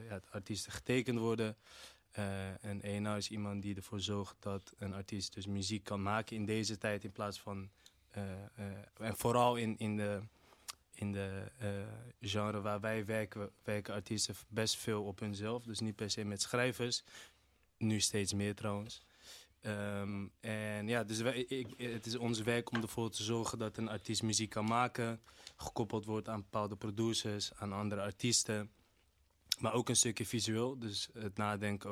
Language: Dutch